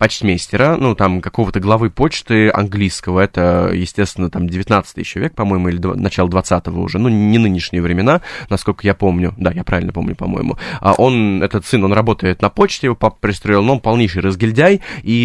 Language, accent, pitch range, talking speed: Russian, native, 95-130 Hz, 185 wpm